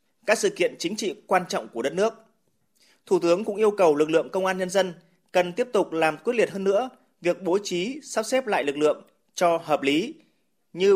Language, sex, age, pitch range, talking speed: Vietnamese, male, 20-39, 155-205 Hz, 225 wpm